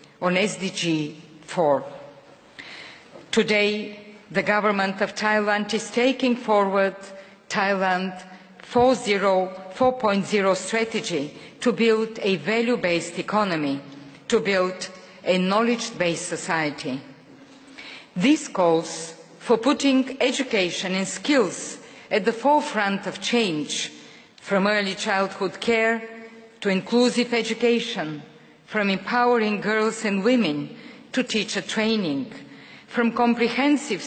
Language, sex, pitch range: Thai, female, 190-235 Hz